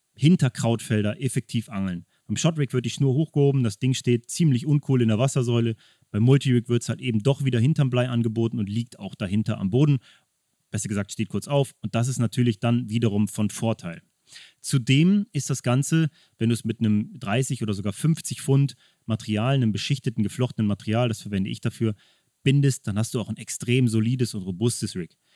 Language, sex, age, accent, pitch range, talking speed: German, male, 30-49, German, 110-135 Hz, 195 wpm